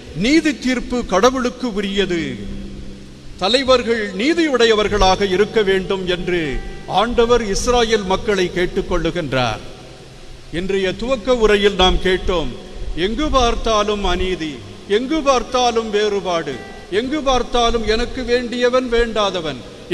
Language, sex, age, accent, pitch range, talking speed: Tamil, male, 50-69, native, 190-260 Hz, 85 wpm